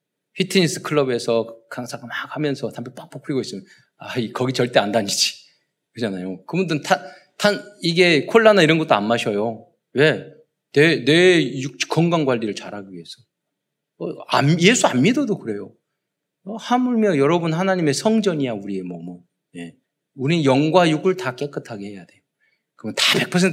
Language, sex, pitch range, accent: Korean, male, 130-210 Hz, native